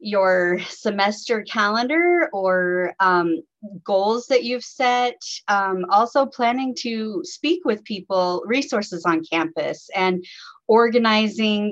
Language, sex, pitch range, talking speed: English, female, 180-230 Hz, 110 wpm